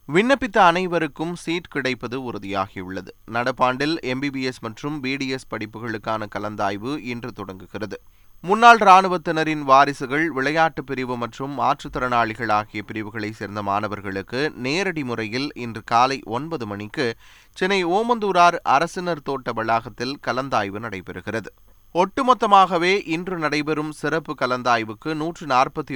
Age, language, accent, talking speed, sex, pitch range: 20-39, Tamil, native, 105 wpm, male, 110-155 Hz